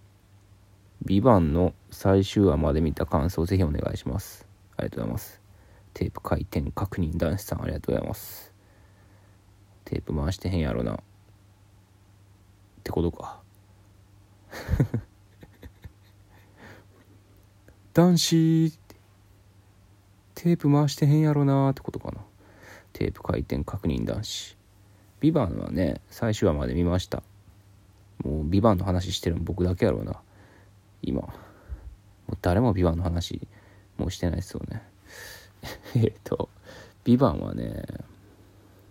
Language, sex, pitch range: Japanese, male, 95-100 Hz